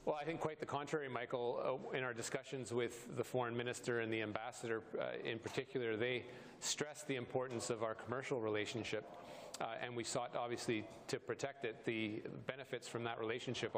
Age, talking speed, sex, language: 40-59, 180 wpm, male, English